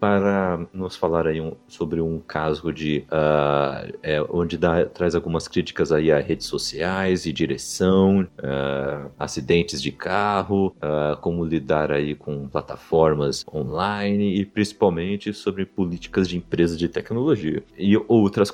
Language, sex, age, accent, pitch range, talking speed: Portuguese, male, 30-49, Brazilian, 80-105 Hz, 140 wpm